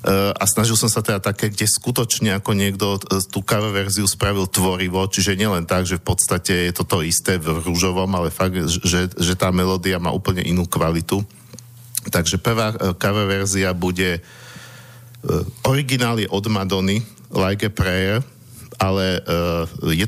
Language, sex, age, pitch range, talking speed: Slovak, male, 50-69, 95-110 Hz, 150 wpm